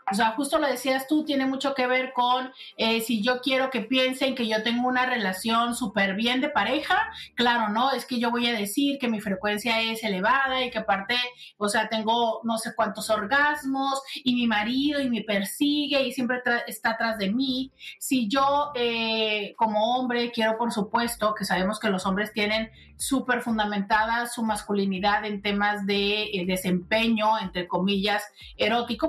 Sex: female